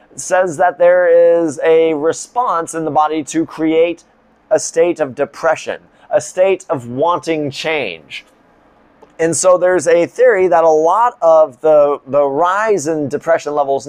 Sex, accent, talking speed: male, American, 150 wpm